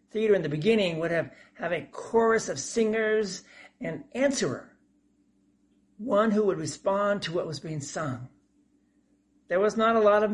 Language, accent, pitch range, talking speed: English, American, 150-215 Hz, 165 wpm